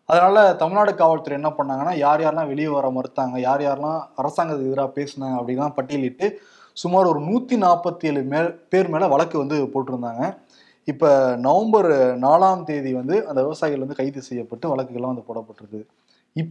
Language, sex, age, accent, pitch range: Tamil, male, 20-39, native, 135-185 Hz